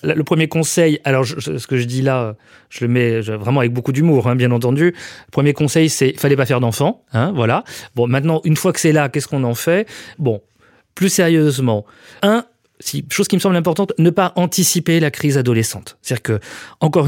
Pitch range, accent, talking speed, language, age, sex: 125-165 Hz, French, 210 wpm, French, 30-49, male